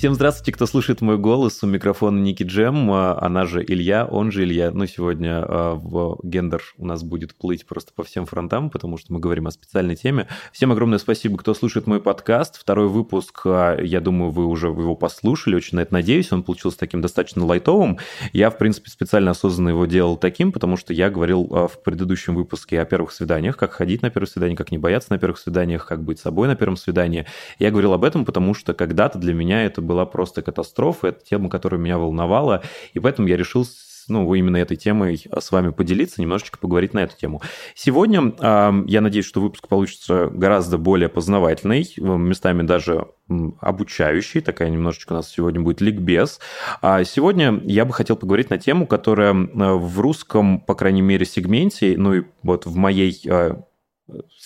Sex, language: male, Russian